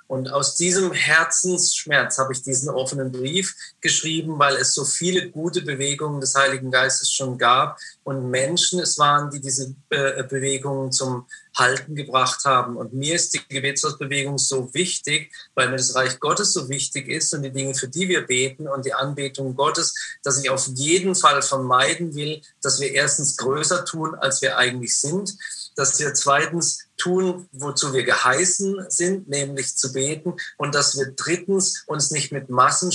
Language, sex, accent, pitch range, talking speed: German, male, German, 130-155 Hz, 170 wpm